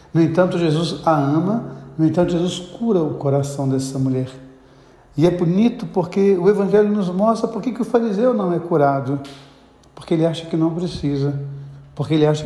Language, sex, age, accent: Portuguese, male, 60-79, Brazilian